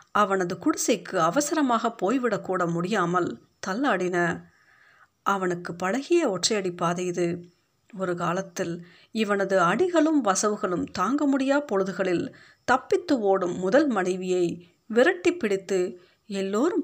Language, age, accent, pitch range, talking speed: Tamil, 50-69, native, 180-245 Hz, 85 wpm